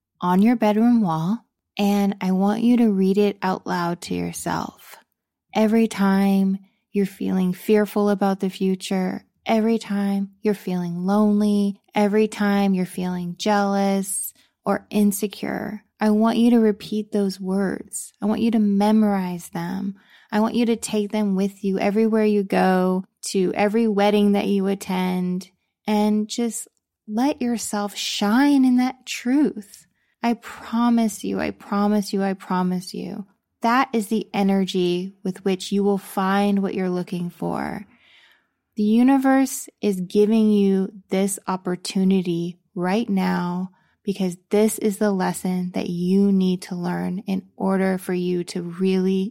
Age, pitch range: 20-39, 185-210 Hz